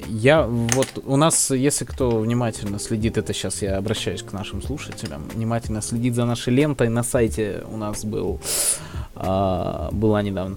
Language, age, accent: Russian, 20-39, native